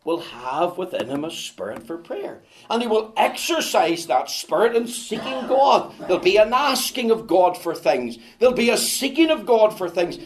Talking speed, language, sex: 195 wpm, English, male